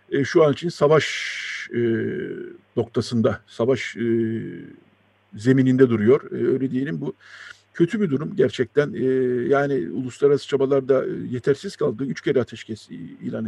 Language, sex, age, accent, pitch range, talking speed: Turkish, male, 50-69, native, 120-145 Hz, 105 wpm